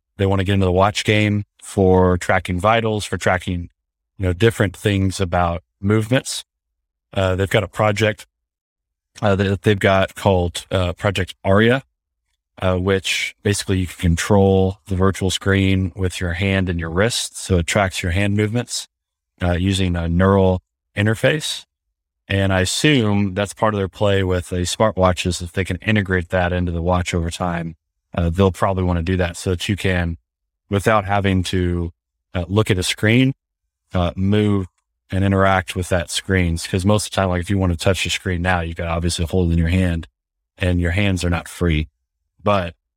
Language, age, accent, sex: English, 20-39, American, male